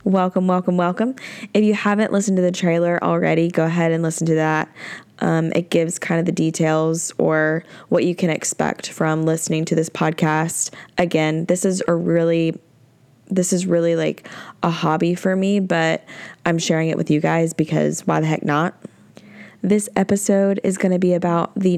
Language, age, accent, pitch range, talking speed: English, 10-29, American, 160-185 Hz, 185 wpm